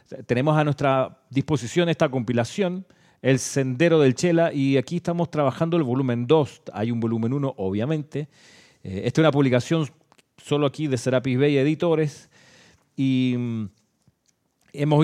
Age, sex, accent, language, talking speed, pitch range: 40-59, male, Argentinian, Spanish, 135 wpm, 125-160 Hz